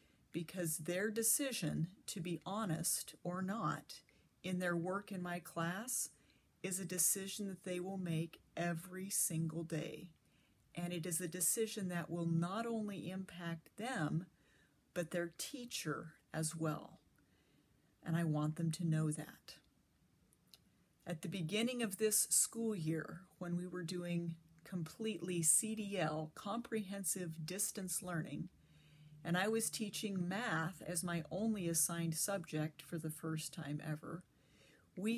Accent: American